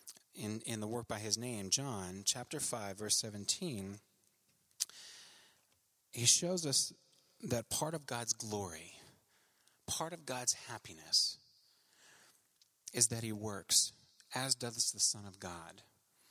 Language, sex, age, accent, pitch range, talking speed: English, male, 30-49, American, 105-140 Hz, 125 wpm